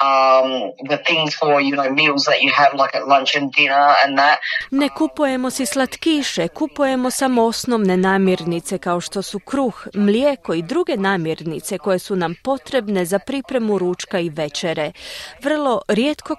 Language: Croatian